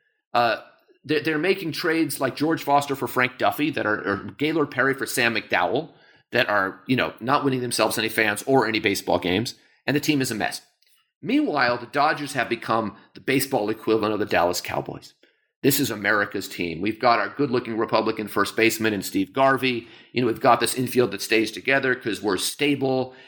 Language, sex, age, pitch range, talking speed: English, male, 40-59, 110-145 Hz, 200 wpm